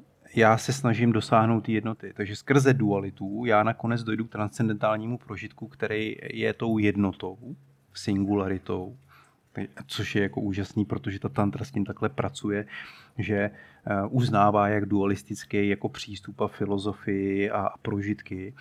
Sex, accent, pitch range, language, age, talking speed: male, native, 100-115 Hz, Czech, 30-49, 130 wpm